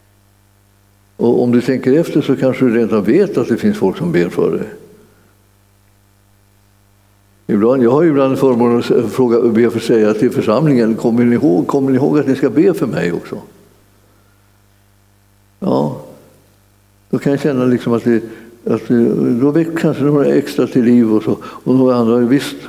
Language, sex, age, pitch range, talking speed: Swedish, male, 60-79, 100-130 Hz, 175 wpm